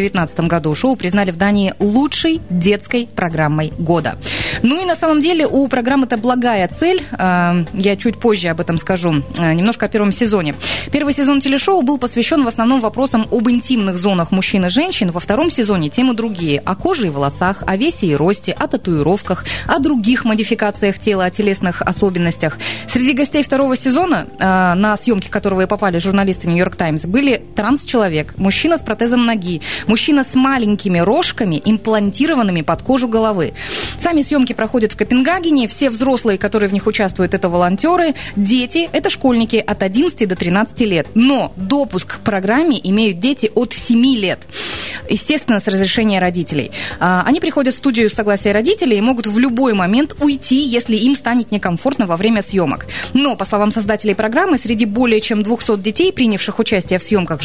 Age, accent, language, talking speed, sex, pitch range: 20-39, native, Russian, 165 wpm, female, 185-260 Hz